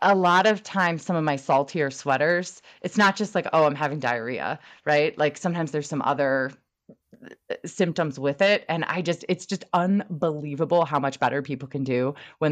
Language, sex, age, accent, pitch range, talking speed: English, female, 20-39, American, 135-180 Hz, 185 wpm